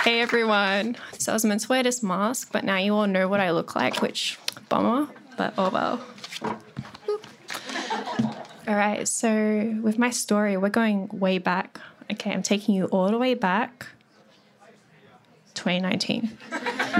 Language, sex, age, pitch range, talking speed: English, female, 10-29, 200-245 Hz, 150 wpm